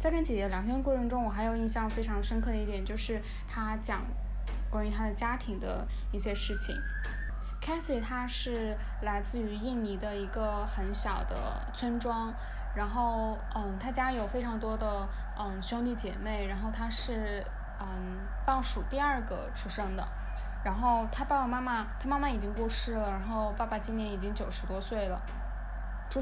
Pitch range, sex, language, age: 205-240 Hz, female, Chinese, 10-29